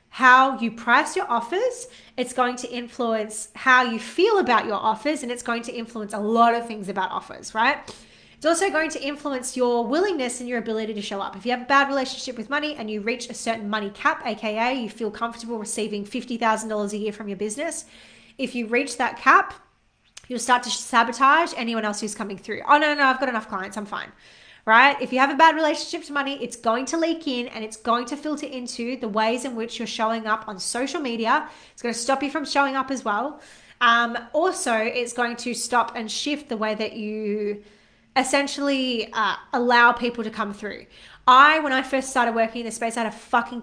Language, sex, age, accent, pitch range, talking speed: English, female, 20-39, Australian, 220-270 Hz, 225 wpm